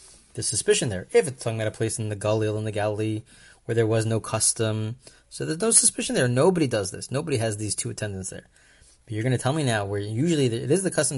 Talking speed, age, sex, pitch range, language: 250 wpm, 30-49, male, 110-140 Hz, English